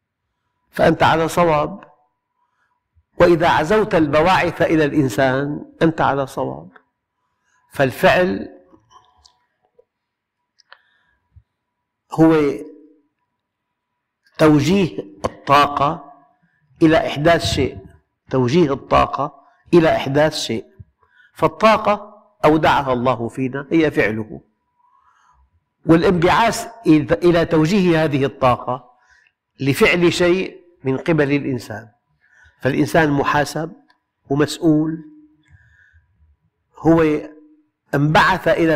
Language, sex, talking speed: Arabic, male, 70 wpm